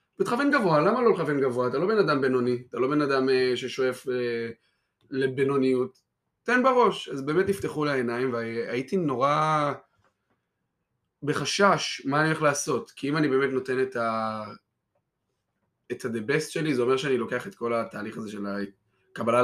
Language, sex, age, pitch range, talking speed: Hebrew, male, 20-39, 115-145 Hz, 155 wpm